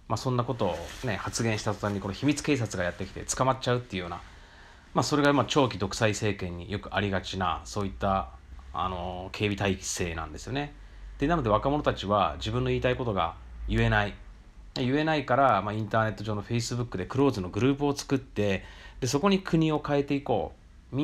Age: 30-49